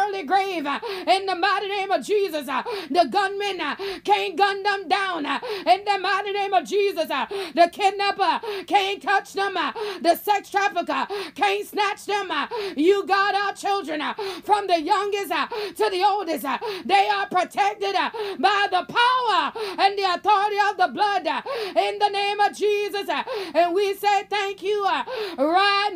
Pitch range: 245-390 Hz